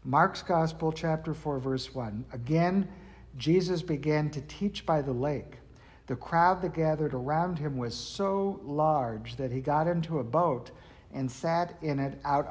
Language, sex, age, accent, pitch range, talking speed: English, male, 60-79, American, 135-165 Hz, 165 wpm